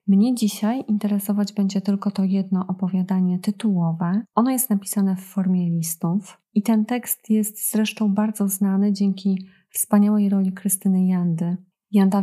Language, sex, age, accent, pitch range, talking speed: Polish, female, 20-39, native, 185-205 Hz, 135 wpm